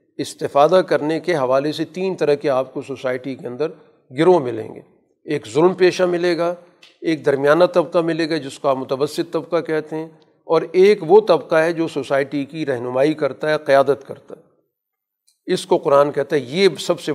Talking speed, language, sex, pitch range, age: 195 wpm, Urdu, male, 140-165 Hz, 50-69